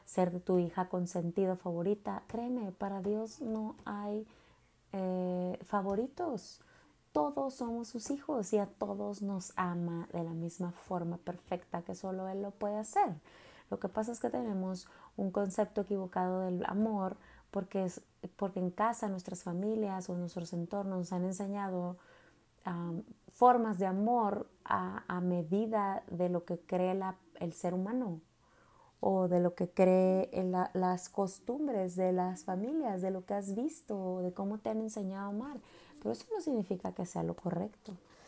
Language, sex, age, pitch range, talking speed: Spanish, female, 30-49, 180-210 Hz, 165 wpm